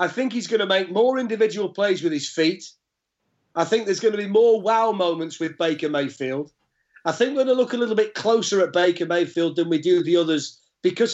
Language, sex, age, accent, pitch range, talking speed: English, male, 40-59, British, 155-200 Hz, 230 wpm